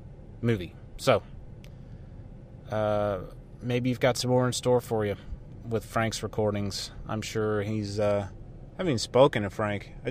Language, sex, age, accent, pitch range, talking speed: English, male, 30-49, American, 110-140 Hz, 155 wpm